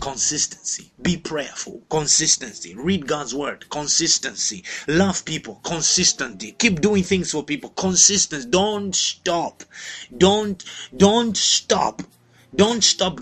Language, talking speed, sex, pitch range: English, 110 wpm, male, 150-190 Hz